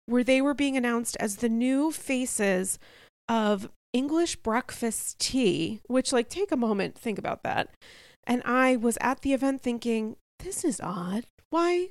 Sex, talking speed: female, 160 wpm